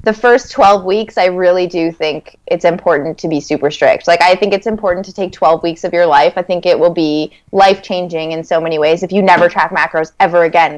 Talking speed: 240 wpm